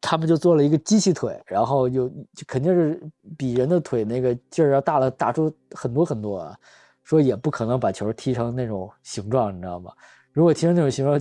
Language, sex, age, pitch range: Chinese, male, 20-39, 120-165 Hz